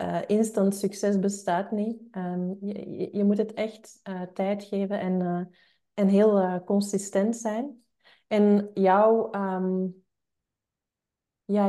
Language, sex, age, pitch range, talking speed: English, female, 30-49, 185-215 Hz, 135 wpm